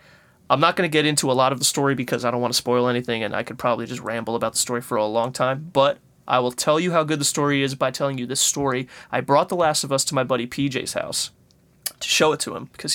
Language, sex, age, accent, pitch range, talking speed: English, male, 20-39, American, 125-145 Hz, 290 wpm